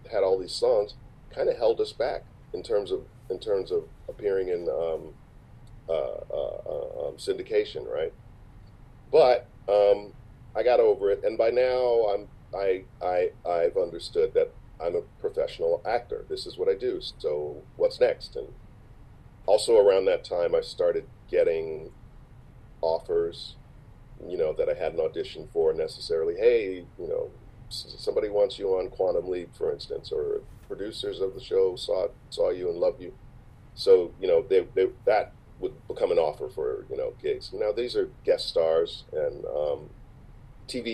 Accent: American